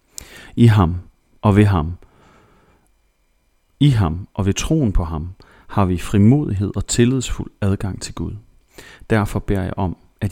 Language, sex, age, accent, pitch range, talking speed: Danish, male, 30-49, native, 90-110 Hz, 145 wpm